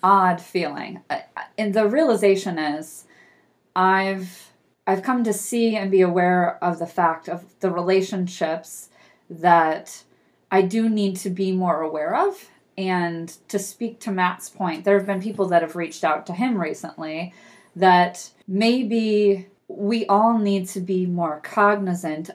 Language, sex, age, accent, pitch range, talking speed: English, female, 30-49, American, 175-210 Hz, 150 wpm